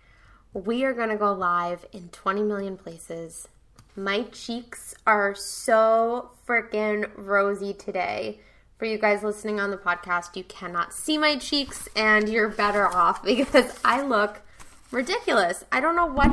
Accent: American